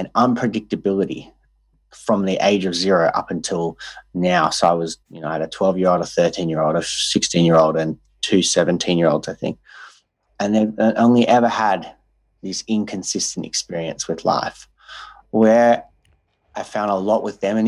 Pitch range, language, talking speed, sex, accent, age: 85-105 Hz, English, 155 wpm, male, Australian, 30-49